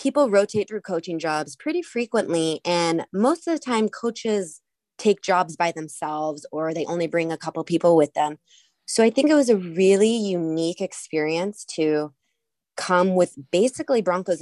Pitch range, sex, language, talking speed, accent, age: 155-195 Hz, female, English, 165 wpm, American, 20-39